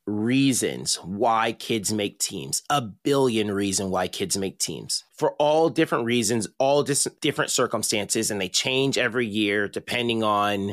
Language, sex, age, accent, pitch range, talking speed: English, male, 30-49, American, 115-160 Hz, 150 wpm